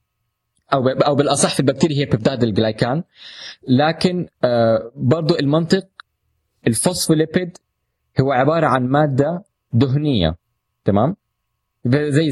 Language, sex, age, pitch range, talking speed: Arabic, male, 20-39, 115-160 Hz, 95 wpm